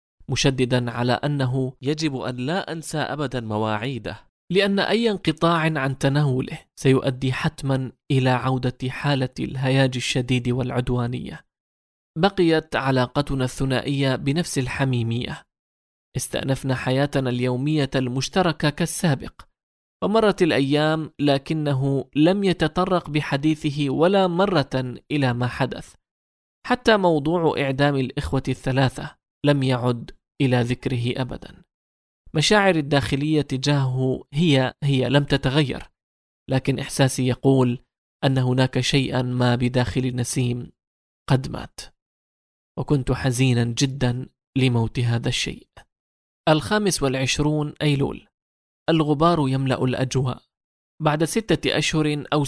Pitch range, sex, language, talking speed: 125-150 Hz, male, English, 100 wpm